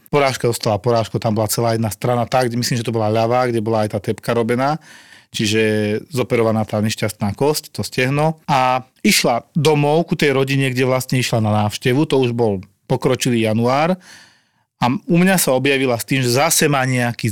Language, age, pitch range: Slovak, 30-49, 110-135 Hz